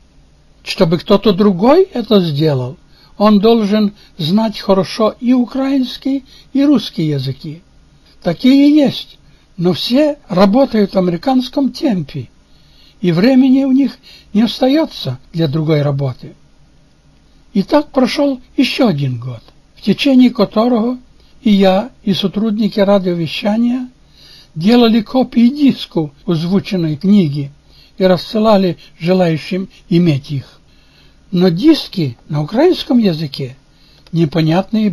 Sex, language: male, Russian